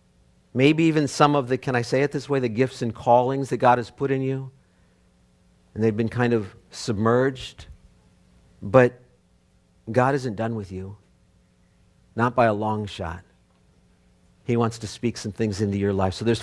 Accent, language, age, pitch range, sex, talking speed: American, English, 50-69, 100-150 Hz, male, 180 wpm